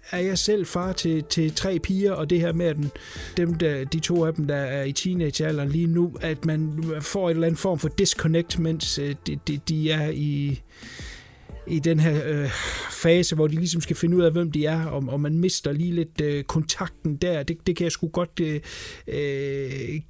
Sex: male